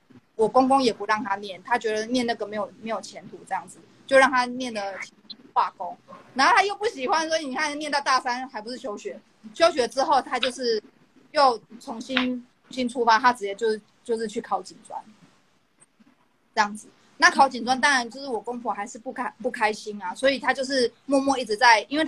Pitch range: 215-265 Hz